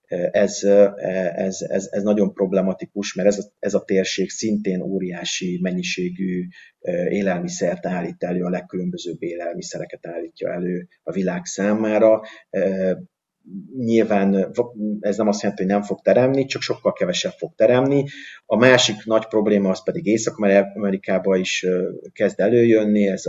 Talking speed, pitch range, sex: 135 wpm, 95-110 Hz, male